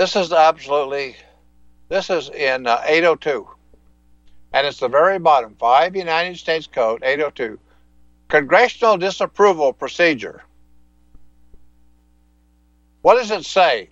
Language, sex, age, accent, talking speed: English, male, 60-79, American, 110 wpm